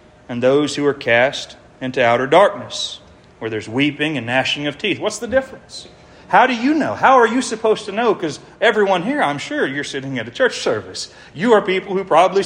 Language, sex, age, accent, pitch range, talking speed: English, male, 40-59, American, 125-165 Hz, 210 wpm